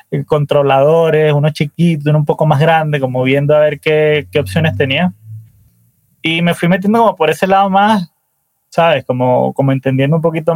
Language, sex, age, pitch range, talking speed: Spanish, male, 20-39, 140-165 Hz, 175 wpm